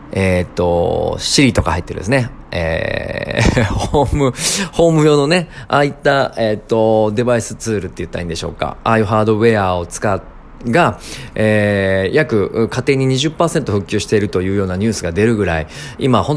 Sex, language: male, Japanese